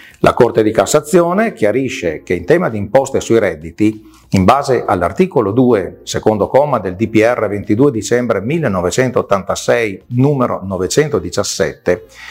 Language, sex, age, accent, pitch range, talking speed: Italian, male, 40-59, native, 100-150 Hz, 120 wpm